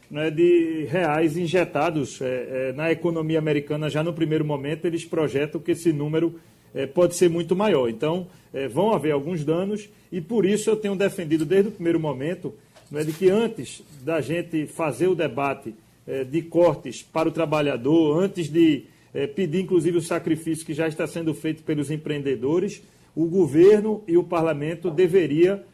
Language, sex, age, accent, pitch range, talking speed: Portuguese, male, 40-59, Brazilian, 150-180 Hz, 155 wpm